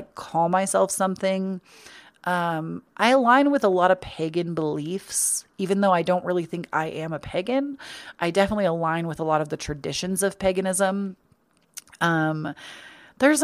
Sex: female